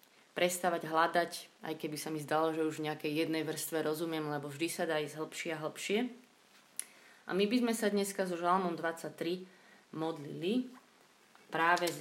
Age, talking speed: 30-49, 170 wpm